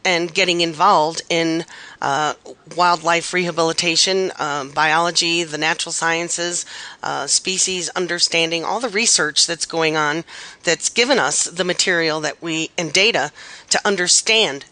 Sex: female